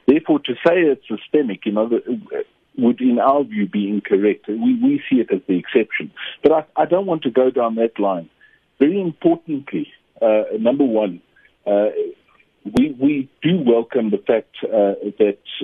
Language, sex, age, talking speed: English, male, 50-69, 170 wpm